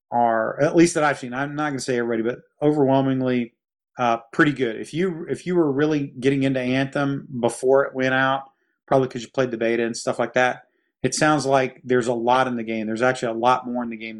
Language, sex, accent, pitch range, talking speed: English, male, American, 115-135 Hz, 240 wpm